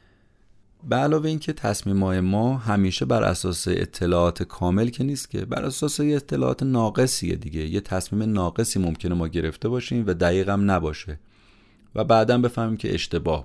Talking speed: 150 wpm